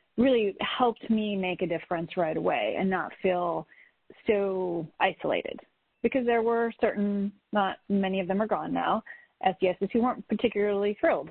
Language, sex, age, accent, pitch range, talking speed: English, female, 30-49, American, 185-230 Hz, 155 wpm